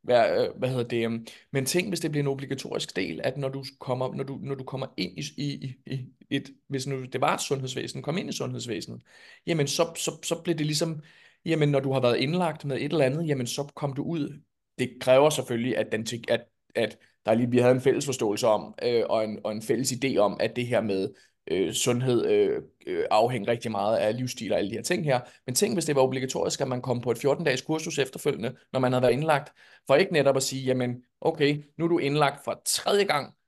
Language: Danish